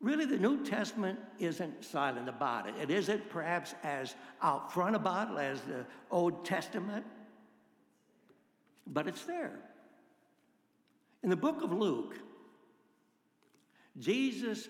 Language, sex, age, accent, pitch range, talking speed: English, male, 60-79, American, 160-215 Hz, 120 wpm